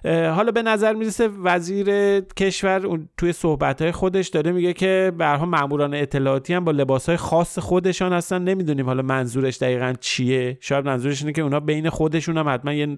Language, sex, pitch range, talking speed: Persian, male, 130-175 Hz, 175 wpm